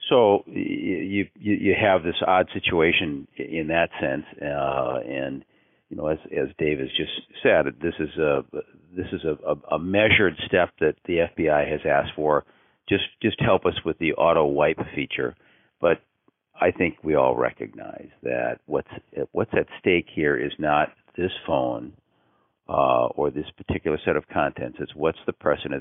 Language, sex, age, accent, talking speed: English, male, 50-69, American, 170 wpm